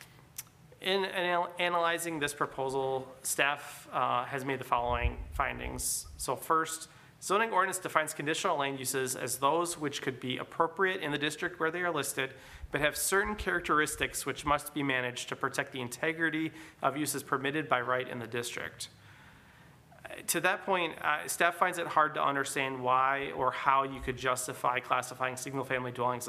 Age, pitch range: 30-49, 125-150 Hz